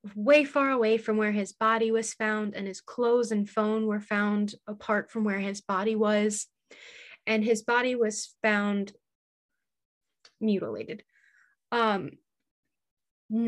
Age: 20-39